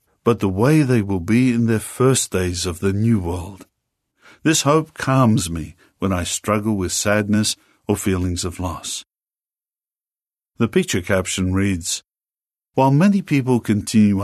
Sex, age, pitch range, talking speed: male, 50-69, 95-125 Hz, 150 wpm